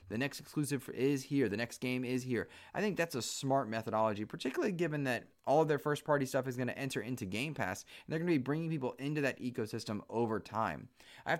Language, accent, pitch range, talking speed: English, American, 110-145 Hz, 235 wpm